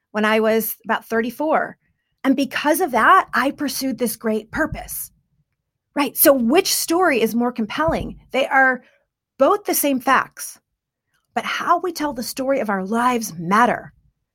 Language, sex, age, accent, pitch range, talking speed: English, female, 40-59, American, 220-290 Hz, 155 wpm